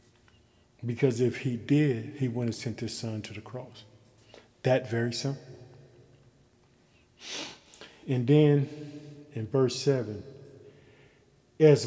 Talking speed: 105 wpm